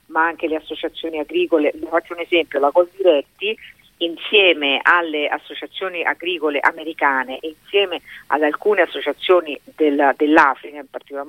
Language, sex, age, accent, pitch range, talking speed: Italian, female, 50-69, native, 150-185 Hz, 135 wpm